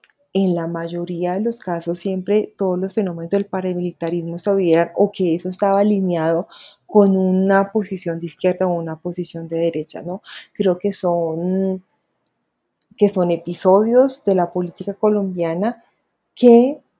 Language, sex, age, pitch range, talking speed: Spanish, female, 30-49, 175-205 Hz, 145 wpm